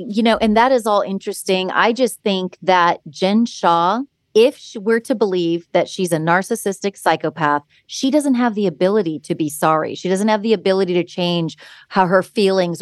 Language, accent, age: English, American, 30-49